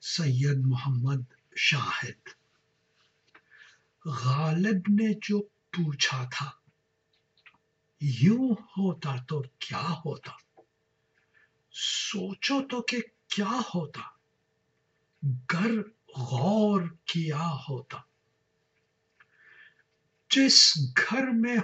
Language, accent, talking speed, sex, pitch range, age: English, Indian, 65 wpm, male, 155-230 Hz, 60-79